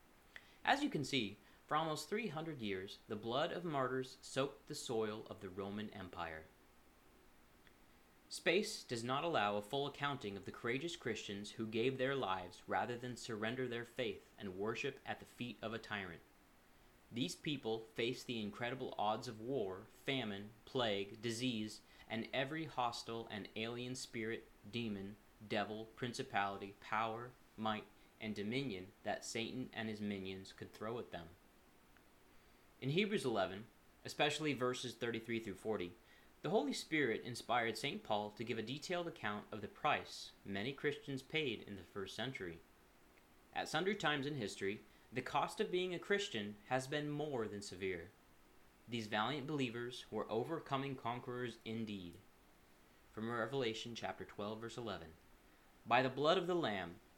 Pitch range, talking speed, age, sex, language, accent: 100-130 Hz, 150 wpm, 30-49, male, English, American